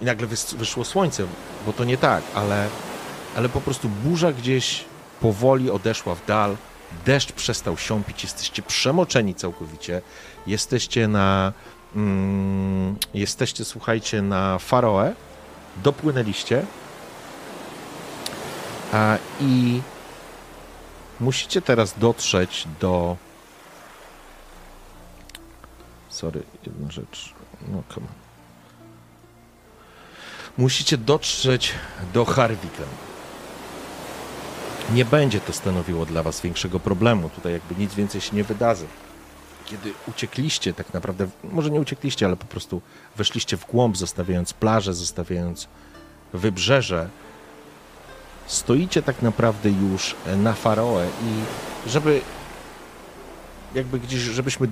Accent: native